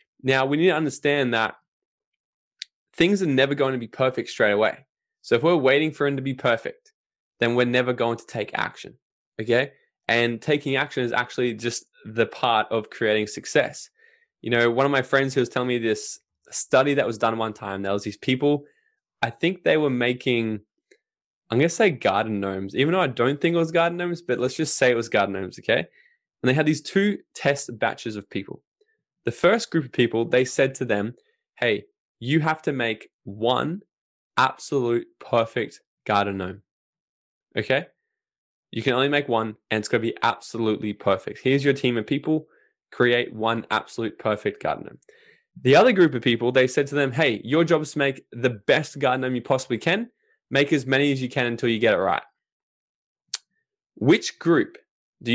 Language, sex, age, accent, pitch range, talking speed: English, male, 10-29, Australian, 120-170 Hz, 195 wpm